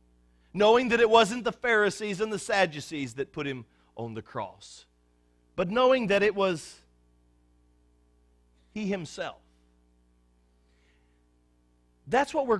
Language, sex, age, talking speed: English, male, 40-59, 120 wpm